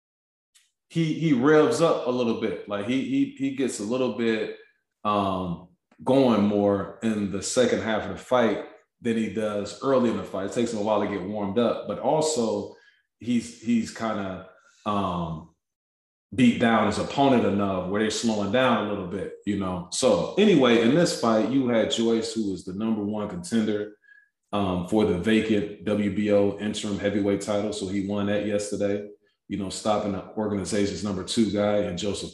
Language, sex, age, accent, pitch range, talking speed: English, male, 20-39, American, 100-115 Hz, 185 wpm